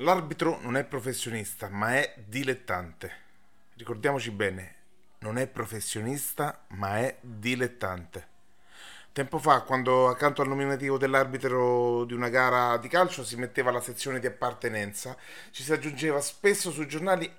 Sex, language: male, Italian